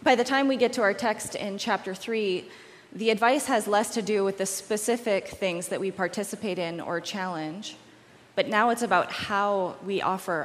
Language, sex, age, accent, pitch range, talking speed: English, female, 20-39, American, 185-220 Hz, 195 wpm